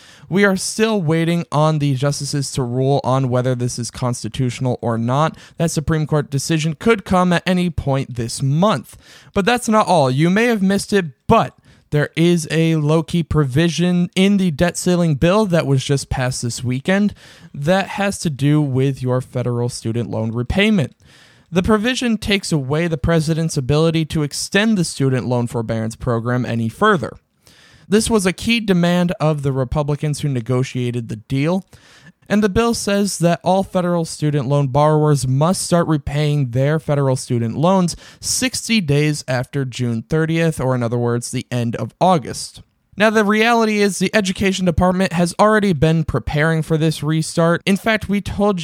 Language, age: English, 20-39